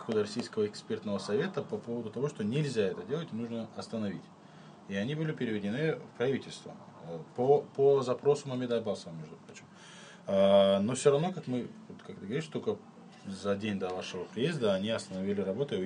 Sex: male